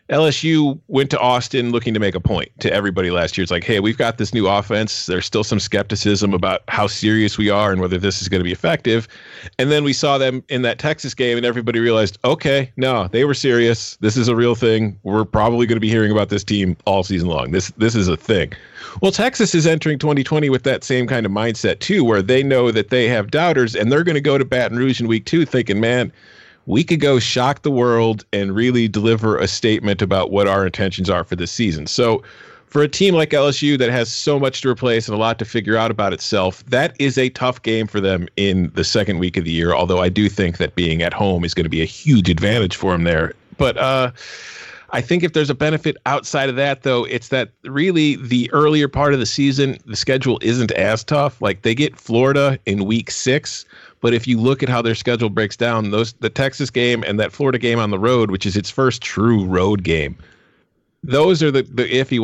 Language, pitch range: English, 105-130 Hz